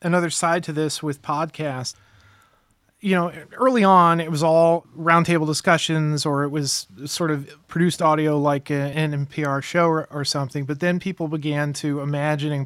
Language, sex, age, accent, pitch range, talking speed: English, male, 30-49, American, 140-160 Hz, 165 wpm